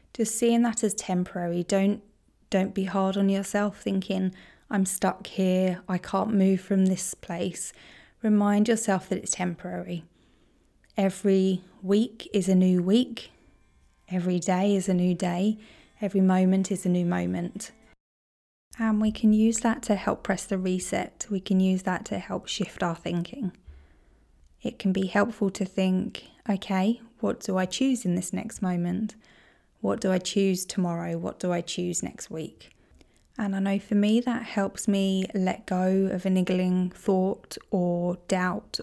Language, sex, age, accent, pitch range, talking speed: English, female, 20-39, British, 180-210 Hz, 160 wpm